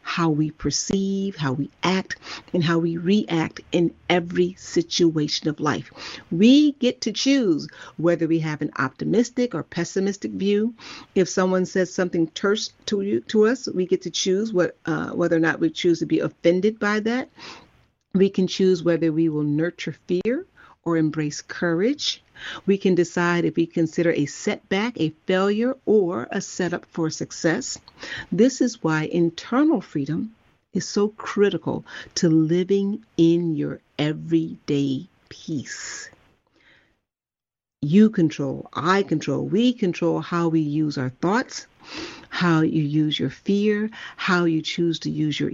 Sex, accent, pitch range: female, American, 160-205 Hz